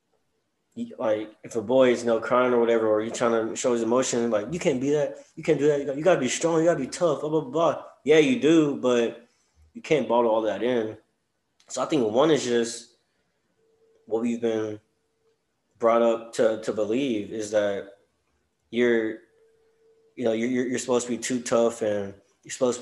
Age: 20-39